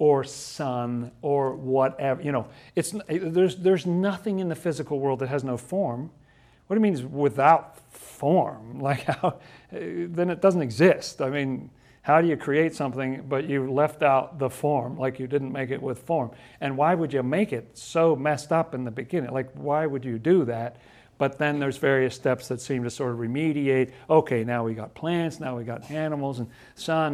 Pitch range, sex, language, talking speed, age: 125-150 Hz, male, English, 195 wpm, 50-69